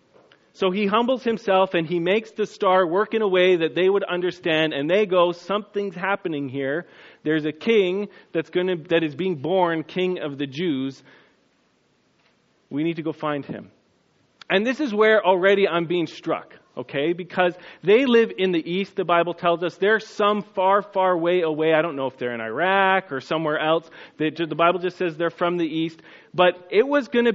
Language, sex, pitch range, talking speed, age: English, male, 150-195 Hz, 200 wpm, 40-59